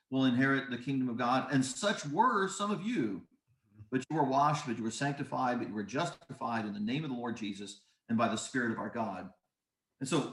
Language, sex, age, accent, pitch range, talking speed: English, male, 50-69, American, 125-165 Hz, 230 wpm